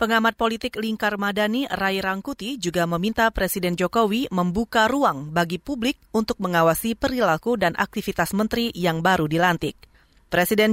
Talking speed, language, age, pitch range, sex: 135 wpm, Indonesian, 30-49, 190-240 Hz, female